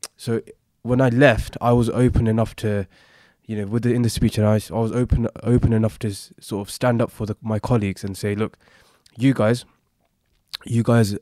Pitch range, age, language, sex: 105-125 Hz, 20-39, English, male